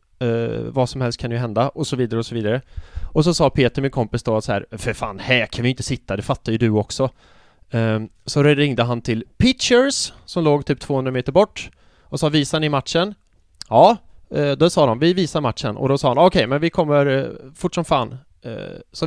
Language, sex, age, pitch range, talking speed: English, male, 20-39, 115-165 Hz, 235 wpm